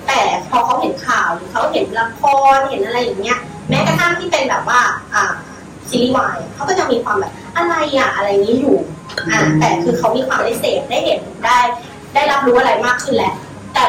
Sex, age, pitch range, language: female, 20-39, 200-280 Hz, Thai